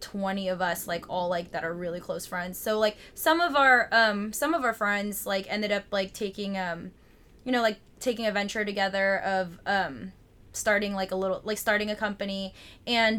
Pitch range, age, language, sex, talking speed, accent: 195-230 Hz, 20-39, English, female, 205 wpm, American